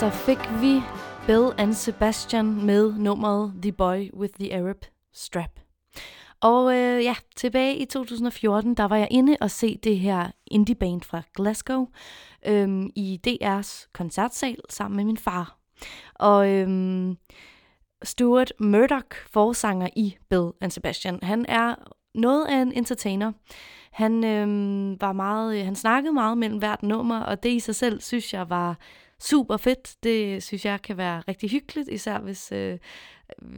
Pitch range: 195-240 Hz